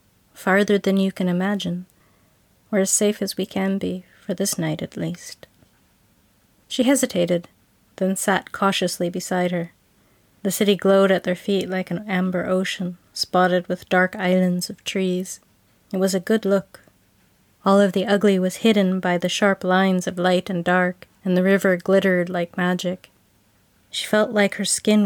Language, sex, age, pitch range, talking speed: English, female, 30-49, 165-200 Hz, 170 wpm